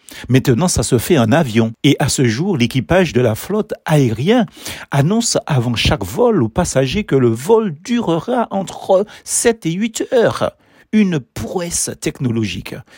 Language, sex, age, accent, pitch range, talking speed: French, male, 60-79, French, 125-190 Hz, 155 wpm